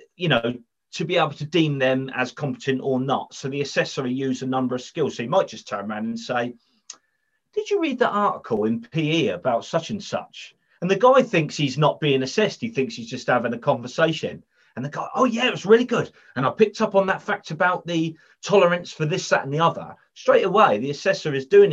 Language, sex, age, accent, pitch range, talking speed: English, male, 30-49, British, 120-180 Hz, 235 wpm